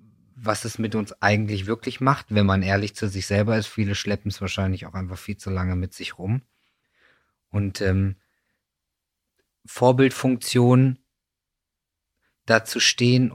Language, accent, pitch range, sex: German, German, 95-115 Hz, male